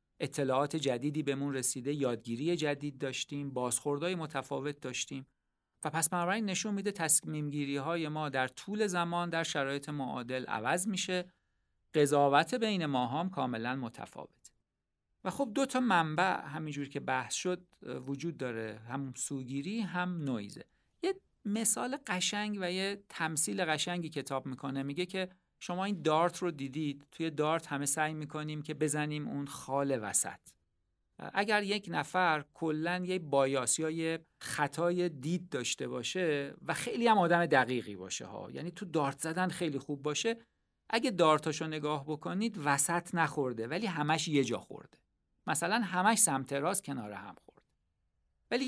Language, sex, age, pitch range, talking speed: Persian, male, 50-69, 140-180 Hz, 145 wpm